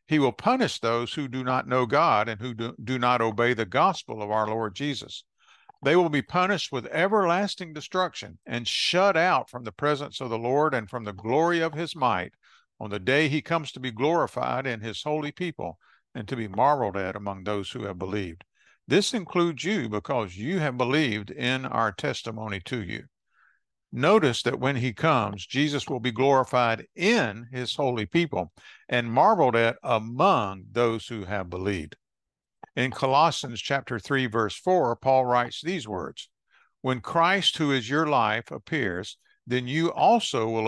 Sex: male